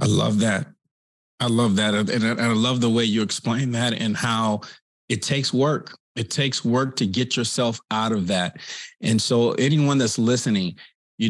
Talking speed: 185 wpm